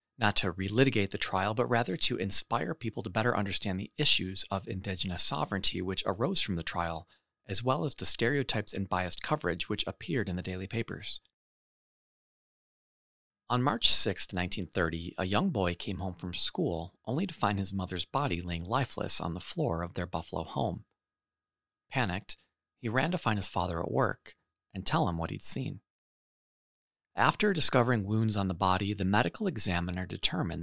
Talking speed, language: 170 wpm, English